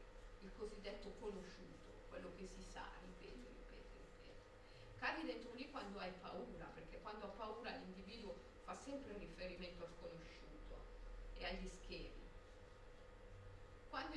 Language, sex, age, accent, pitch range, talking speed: Italian, female, 40-59, native, 205-260 Hz, 125 wpm